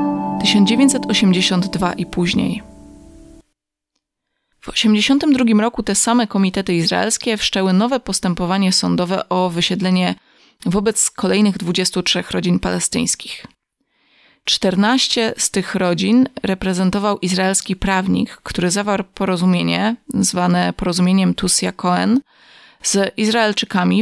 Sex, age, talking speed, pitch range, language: female, 20-39, 90 wpm, 180-210 Hz, Polish